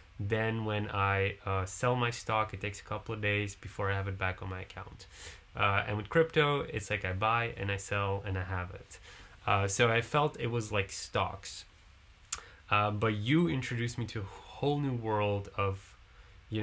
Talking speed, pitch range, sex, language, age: 200 wpm, 100-120 Hz, male, English, 20-39